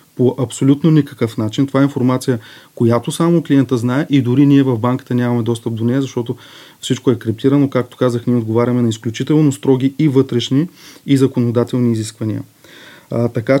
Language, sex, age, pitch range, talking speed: Bulgarian, male, 30-49, 125-145 Hz, 170 wpm